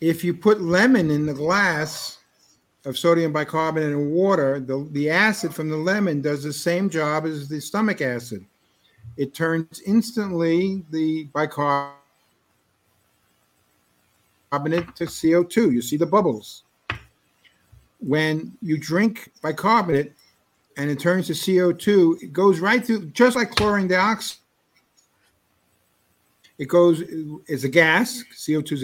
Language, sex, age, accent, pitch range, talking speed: English, male, 50-69, American, 125-180 Hz, 125 wpm